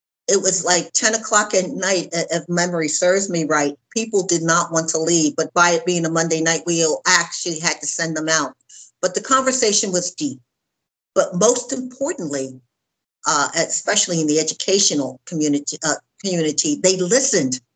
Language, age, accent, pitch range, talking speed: English, 50-69, American, 150-185 Hz, 170 wpm